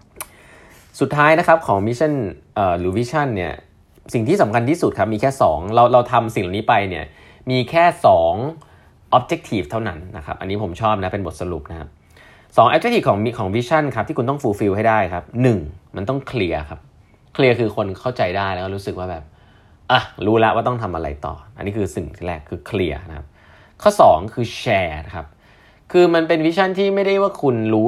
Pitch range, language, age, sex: 90-130 Hz, Thai, 20-39, male